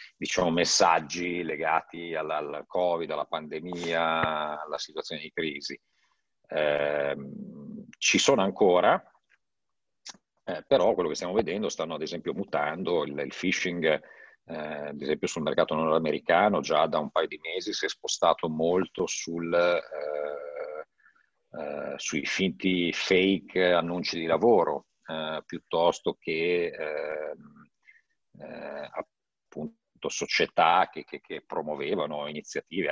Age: 50-69